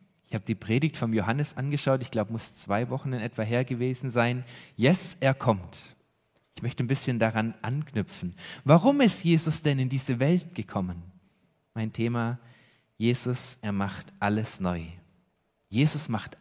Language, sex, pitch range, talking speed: German, male, 110-155 Hz, 155 wpm